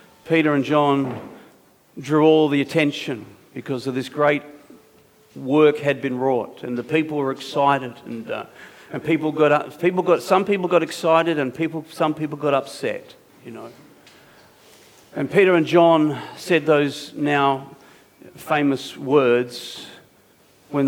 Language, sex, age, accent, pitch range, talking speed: English, male, 50-69, Australian, 130-150 Hz, 145 wpm